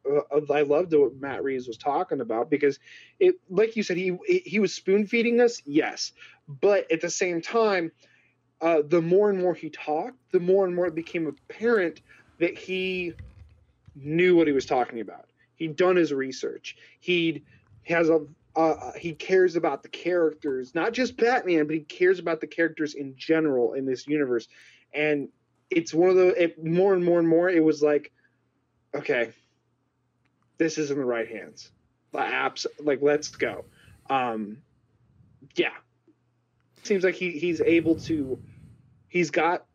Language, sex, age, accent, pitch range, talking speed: English, male, 20-39, American, 140-185 Hz, 165 wpm